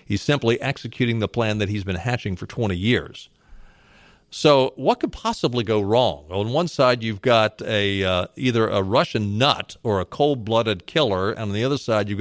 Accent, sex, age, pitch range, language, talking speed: American, male, 50-69, 105-135 Hz, English, 195 wpm